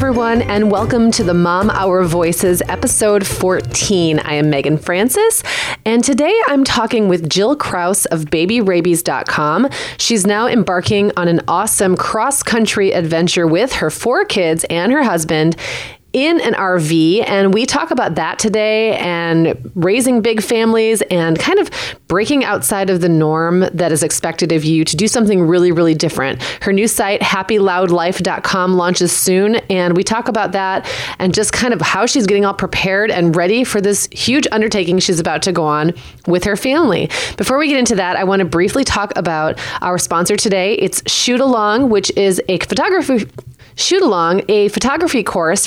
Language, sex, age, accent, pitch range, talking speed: English, female, 30-49, American, 175-230 Hz, 170 wpm